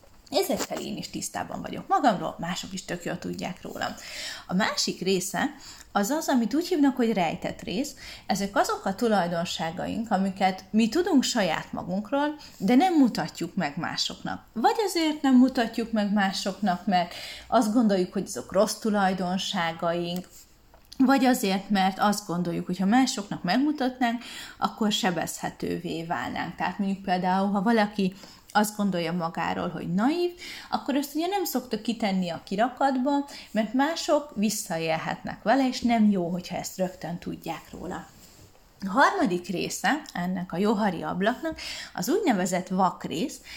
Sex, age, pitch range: female, 30-49, 185-265 Hz